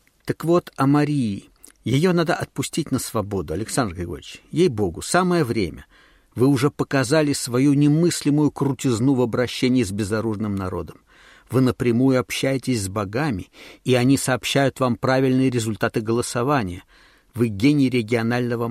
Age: 50-69